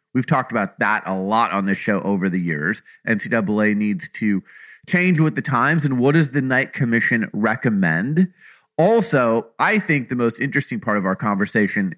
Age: 30-49